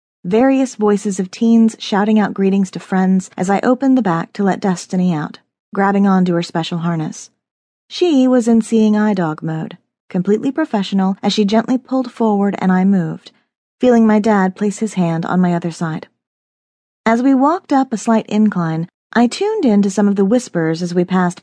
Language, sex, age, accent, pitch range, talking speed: English, female, 40-59, American, 185-240 Hz, 190 wpm